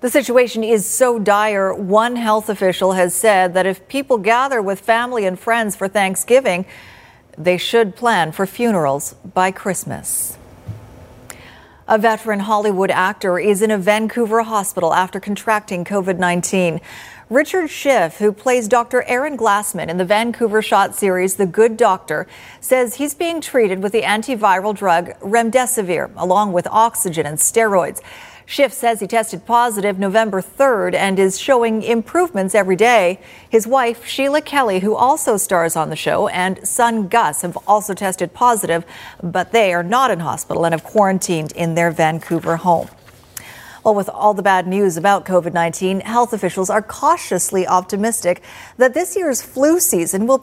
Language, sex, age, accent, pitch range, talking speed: English, female, 50-69, American, 185-235 Hz, 155 wpm